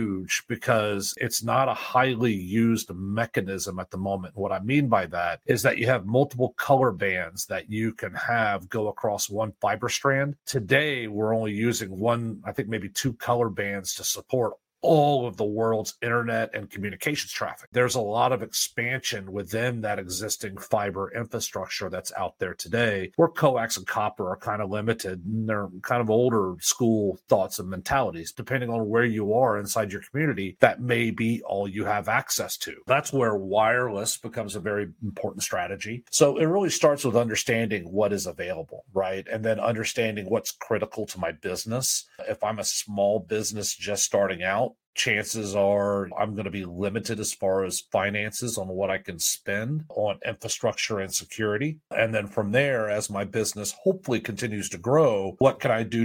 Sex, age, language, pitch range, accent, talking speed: male, 40-59, English, 100-120 Hz, American, 180 wpm